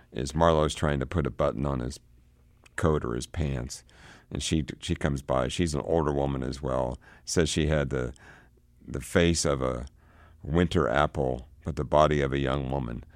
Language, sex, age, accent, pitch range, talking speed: English, male, 60-79, American, 65-80 Hz, 185 wpm